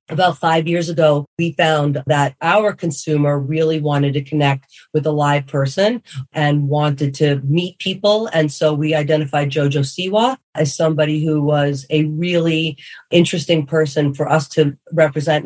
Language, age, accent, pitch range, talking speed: English, 40-59, American, 145-175 Hz, 155 wpm